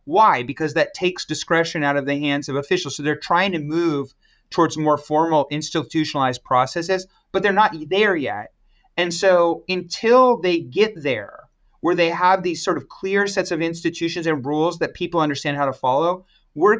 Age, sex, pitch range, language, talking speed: 30-49, male, 145-180 Hz, Vietnamese, 180 wpm